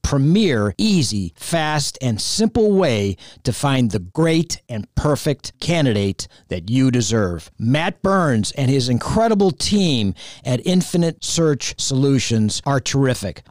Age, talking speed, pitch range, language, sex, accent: 50-69, 125 wpm, 115-170 Hz, English, male, American